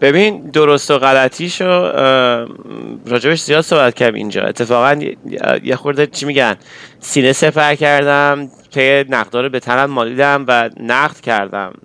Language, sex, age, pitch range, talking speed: Persian, male, 30-49, 110-140 Hz, 125 wpm